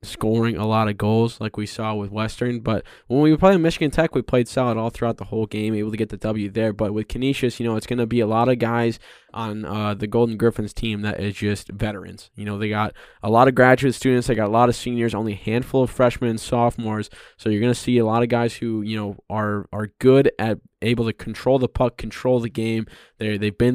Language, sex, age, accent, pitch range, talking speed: English, male, 10-29, American, 105-125 Hz, 265 wpm